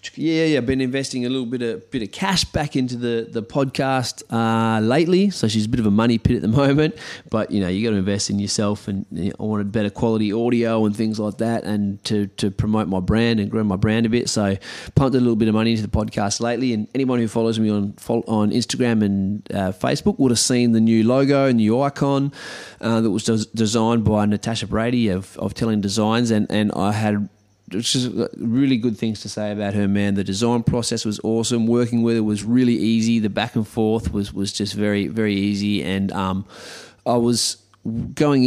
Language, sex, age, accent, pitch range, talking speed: English, male, 20-39, Australian, 105-120 Hz, 225 wpm